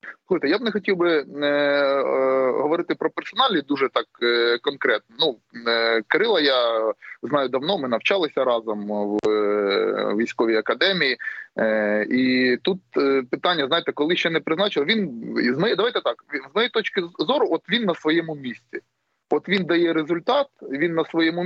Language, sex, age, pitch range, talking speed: Ukrainian, male, 20-39, 135-185 Hz, 160 wpm